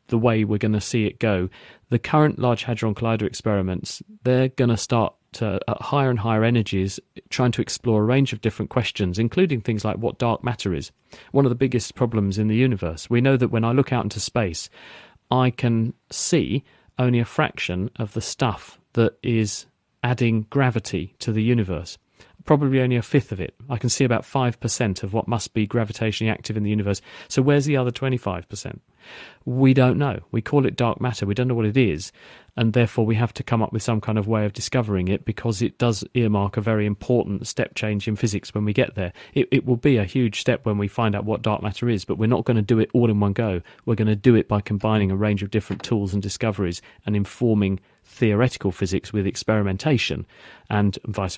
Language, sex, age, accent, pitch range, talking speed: English, male, 40-59, British, 105-120 Hz, 220 wpm